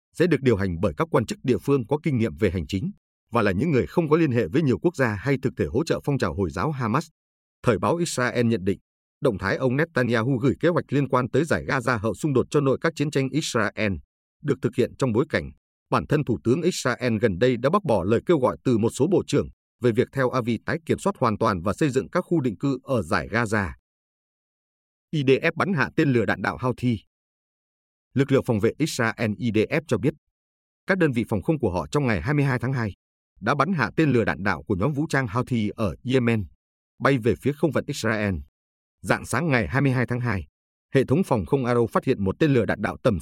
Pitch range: 100-140 Hz